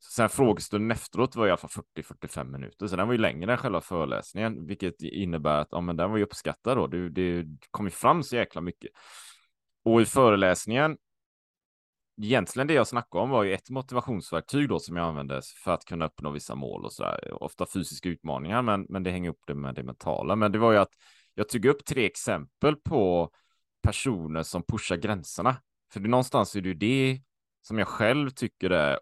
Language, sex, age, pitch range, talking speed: Swedish, male, 30-49, 85-110 Hz, 215 wpm